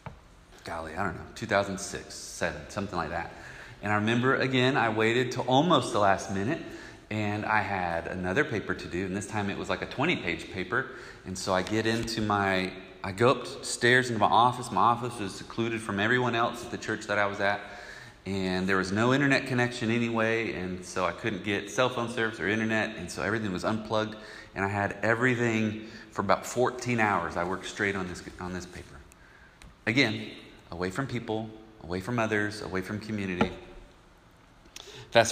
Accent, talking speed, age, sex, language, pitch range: American, 190 wpm, 30-49, male, English, 95-120 Hz